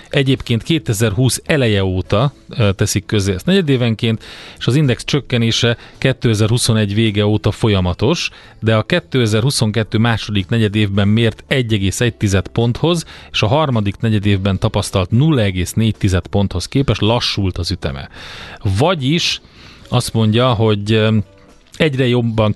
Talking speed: 110 wpm